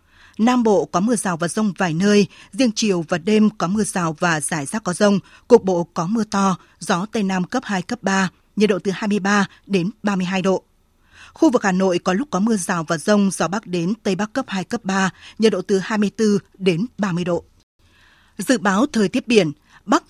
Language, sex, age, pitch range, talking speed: Vietnamese, female, 20-39, 180-220 Hz, 220 wpm